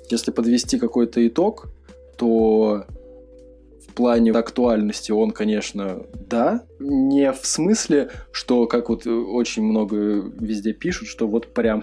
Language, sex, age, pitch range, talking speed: Russian, male, 20-39, 105-140 Hz, 120 wpm